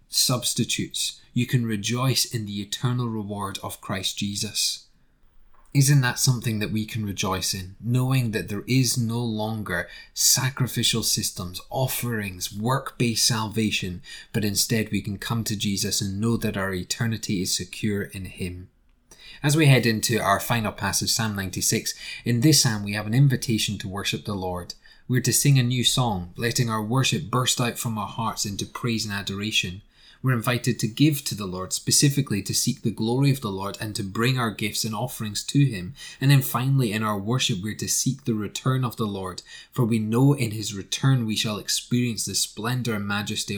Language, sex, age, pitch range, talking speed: English, male, 20-39, 100-125 Hz, 185 wpm